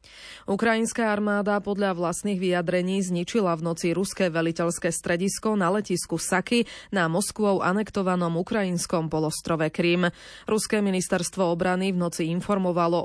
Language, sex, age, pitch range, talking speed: Slovak, female, 20-39, 170-200 Hz, 120 wpm